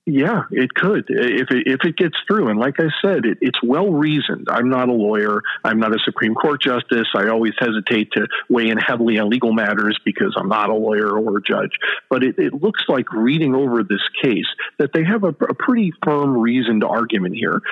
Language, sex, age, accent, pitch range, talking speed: English, male, 40-59, American, 110-125 Hz, 200 wpm